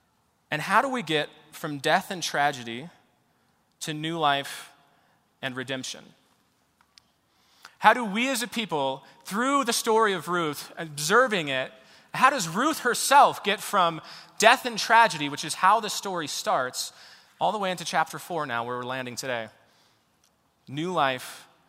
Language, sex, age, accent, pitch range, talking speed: English, male, 30-49, American, 135-185 Hz, 150 wpm